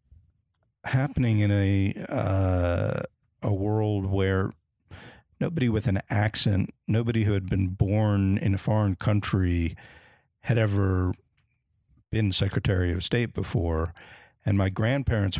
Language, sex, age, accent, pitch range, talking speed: English, male, 50-69, American, 95-115 Hz, 115 wpm